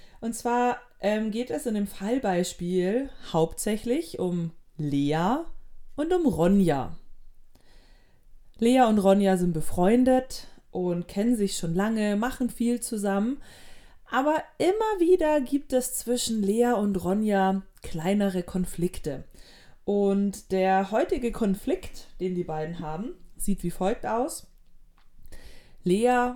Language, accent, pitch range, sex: German, German, 175-235 Hz, female